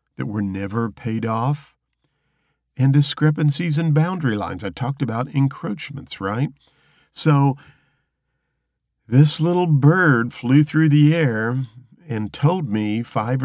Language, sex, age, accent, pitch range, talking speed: English, male, 50-69, American, 100-140 Hz, 120 wpm